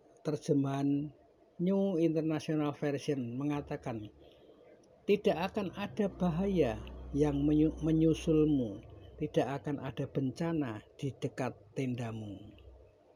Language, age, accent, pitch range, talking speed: English, 60-79, Indonesian, 140-165 Hz, 80 wpm